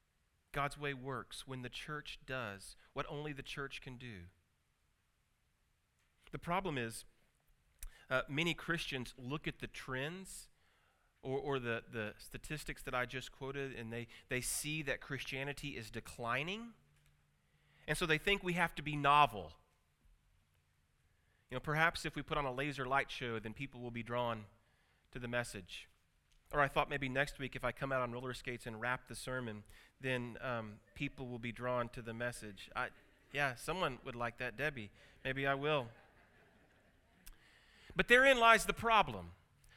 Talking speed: 165 wpm